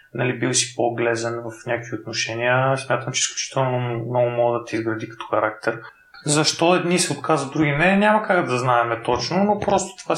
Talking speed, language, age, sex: 185 wpm, Bulgarian, 30-49, male